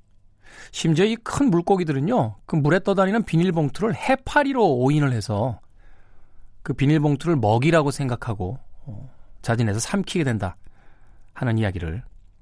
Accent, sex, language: native, male, Korean